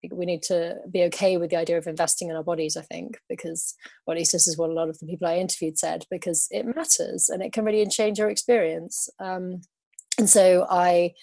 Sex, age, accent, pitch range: female, 20-39, British, 170-195 Hz